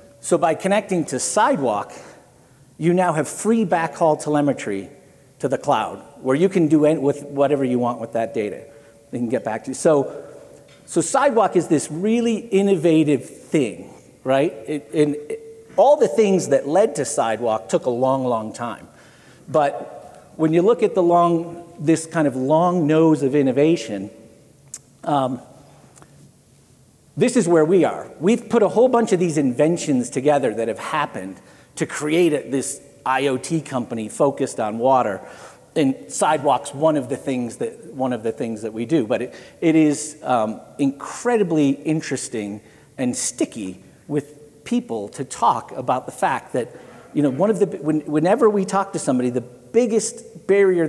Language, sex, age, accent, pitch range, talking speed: English, male, 50-69, American, 130-175 Hz, 165 wpm